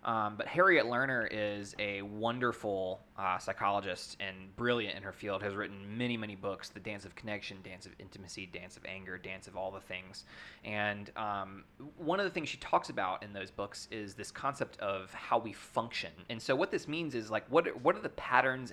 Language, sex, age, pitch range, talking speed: English, male, 20-39, 100-120 Hz, 210 wpm